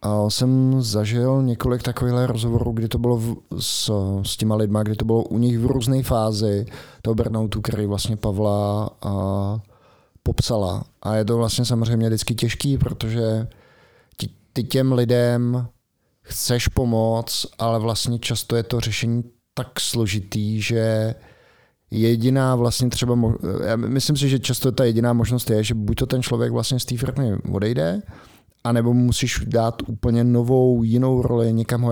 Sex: male